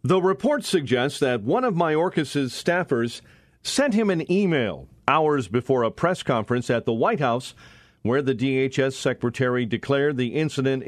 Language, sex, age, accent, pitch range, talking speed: English, male, 40-59, American, 120-145 Hz, 155 wpm